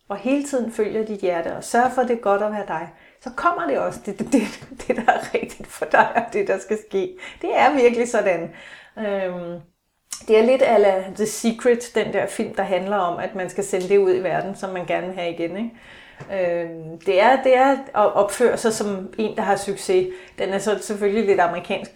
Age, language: 30-49, Danish